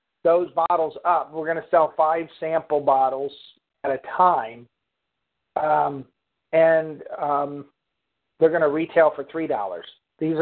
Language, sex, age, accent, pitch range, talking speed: English, male, 50-69, American, 150-165 Hz, 140 wpm